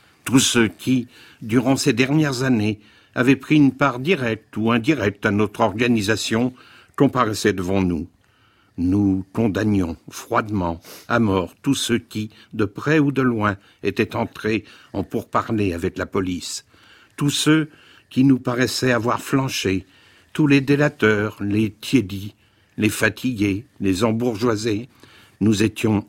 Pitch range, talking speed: 105-135 Hz, 135 wpm